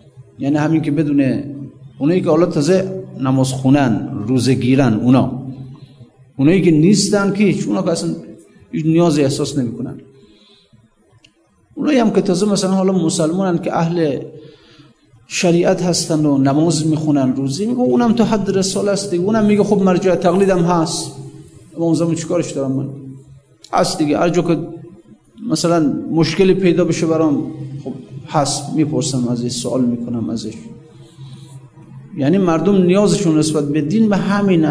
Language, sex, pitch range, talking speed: Persian, male, 135-175 Hz, 140 wpm